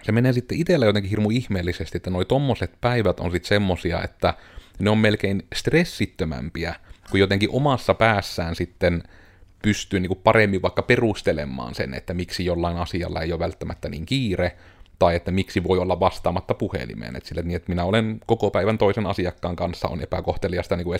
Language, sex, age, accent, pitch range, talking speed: Finnish, male, 30-49, native, 85-100 Hz, 175 wpm